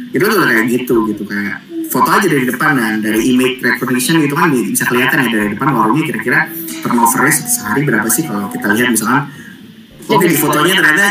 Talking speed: 190 wpm